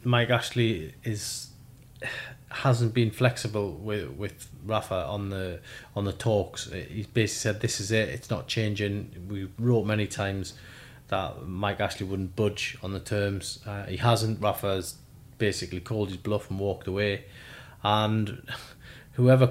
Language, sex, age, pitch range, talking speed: English, male, 30-49, 100-125 Hz, 150 wpm